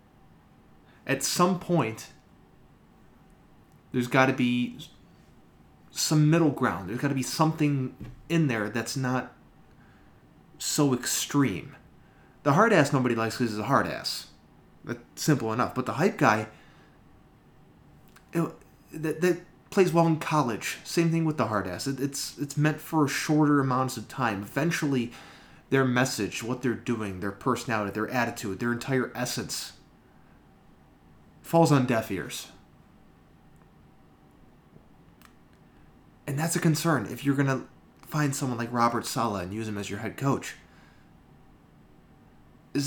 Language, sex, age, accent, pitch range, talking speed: English, male, 30-49, American, 115-155 Hz, 135 wpm